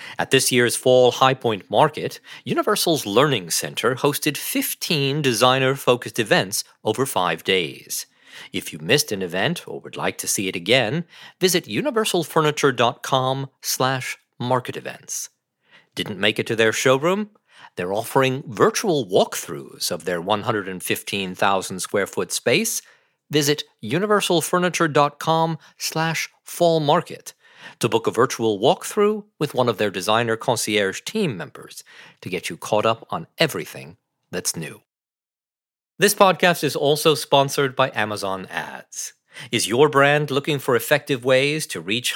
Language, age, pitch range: English, 40-59, 120-165 Hz